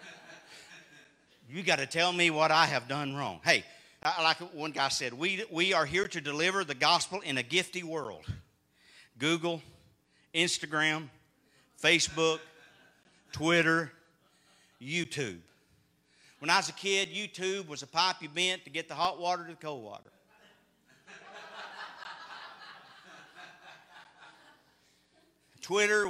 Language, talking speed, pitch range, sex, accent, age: English, 120 wpm, 155-220 Hz, male, American, 50-69